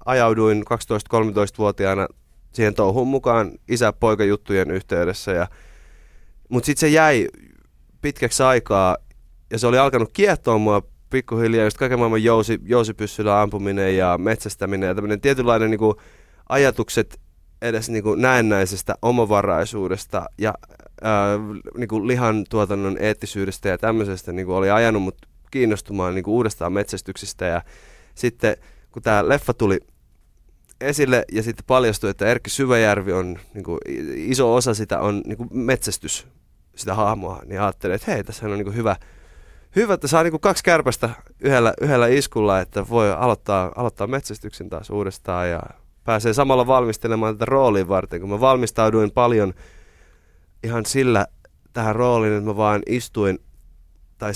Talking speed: 125 wpm